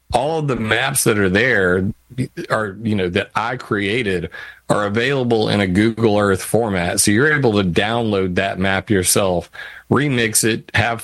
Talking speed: 170 wpm